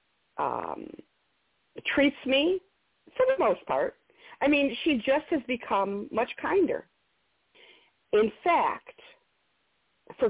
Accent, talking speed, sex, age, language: American, 105 wpm, female, 50-69, English